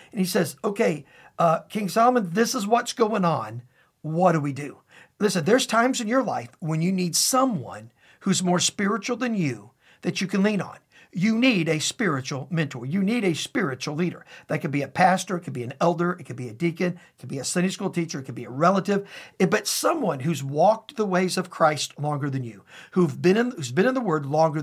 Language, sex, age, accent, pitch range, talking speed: English, male, 50-69, American, 160-210 Hz, 235 wpm